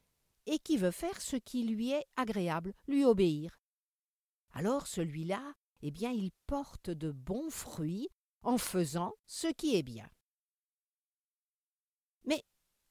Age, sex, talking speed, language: 50-69, female, 125 wpm, French